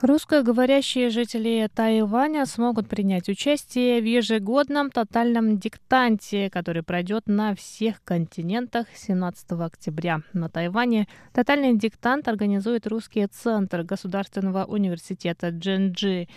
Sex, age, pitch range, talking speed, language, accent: female, 20-39, 185-235 Hz, 100 wpm, Russian, native